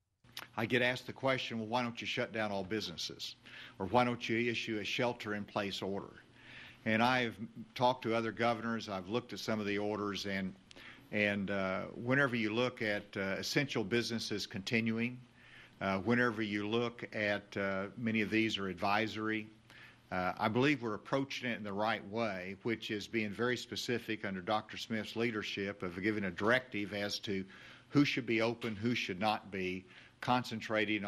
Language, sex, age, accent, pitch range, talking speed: English, male, 50-69, American, 100-120 Hz, 180 wpm